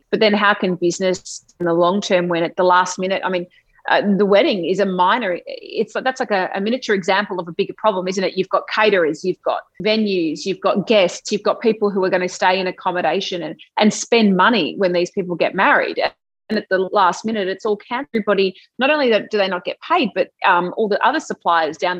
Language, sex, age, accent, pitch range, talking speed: English, female, 30-49, Australian, 180-220 Hz, 235 wpm